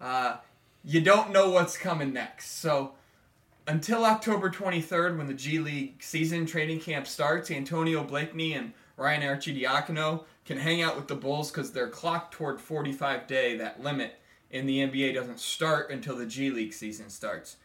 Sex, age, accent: male, 20-39, American